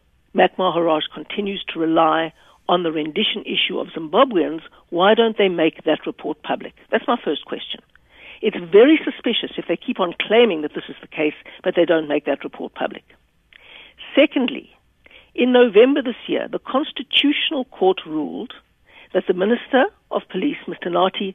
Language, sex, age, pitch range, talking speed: English, female, 60-79, 175-255 Hz, 165 wpm